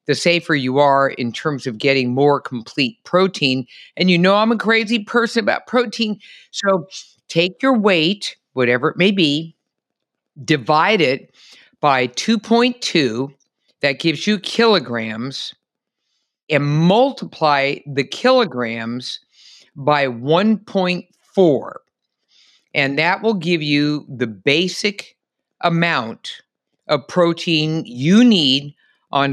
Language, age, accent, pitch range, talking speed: English, 50-69, American, 130-185 Hz, 115 wpm